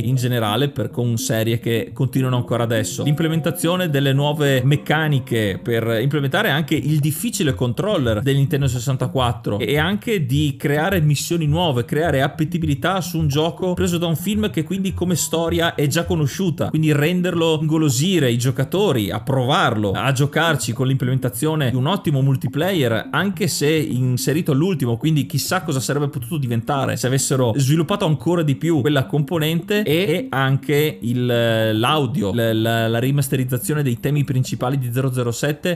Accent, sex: native, male